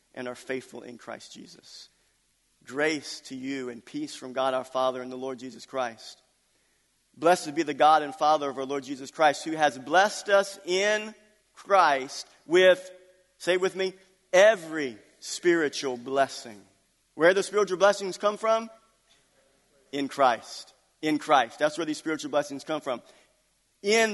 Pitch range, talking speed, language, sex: 135-190 Hz, 155 wpm, English, male